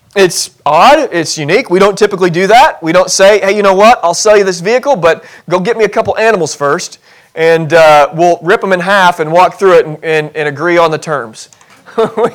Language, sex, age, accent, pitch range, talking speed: English, male, 30-49, American, 165-215 Hz, 230 wpm